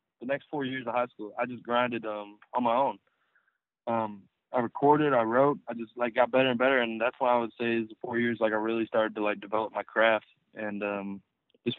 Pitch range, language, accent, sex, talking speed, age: 110-130 Hz, English, American, male, 240 wpm, 20-39